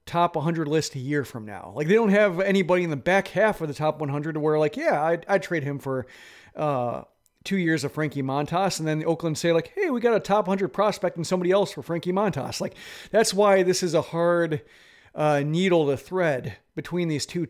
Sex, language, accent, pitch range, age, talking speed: male, English, American, 145-180 Hz, 40-59, 230 wpm